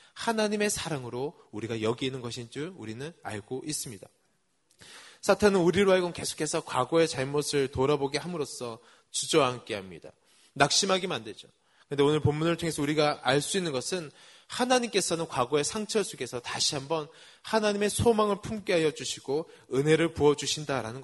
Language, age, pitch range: Korean, 20-39, 125-170 Hz